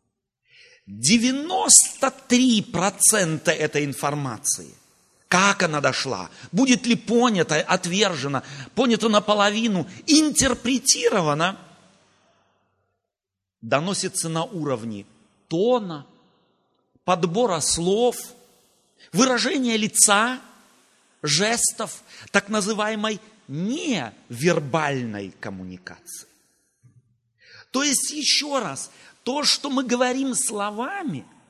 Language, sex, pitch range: Russian, male, 155-250 Hz